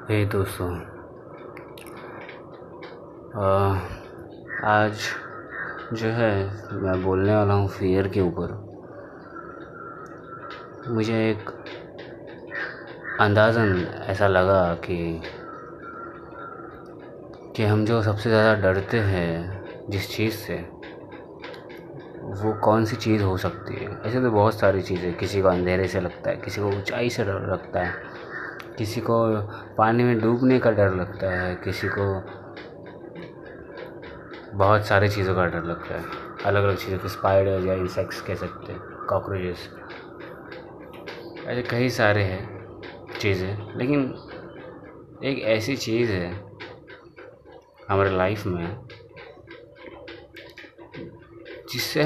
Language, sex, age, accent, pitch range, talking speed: Hindi, male, 20-39, native, 95-115 Hz, 110 wpm